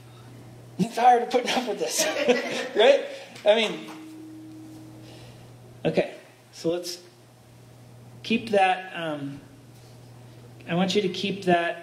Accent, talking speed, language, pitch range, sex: American, 105 wpm, English, 125-170 Hz, male